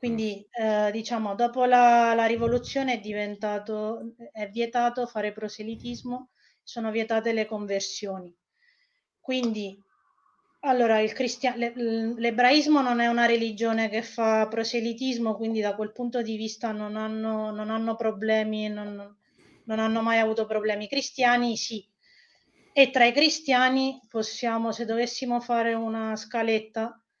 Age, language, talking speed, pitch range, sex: 20-39, Italian, 130 wpm, 210-235 Hz, female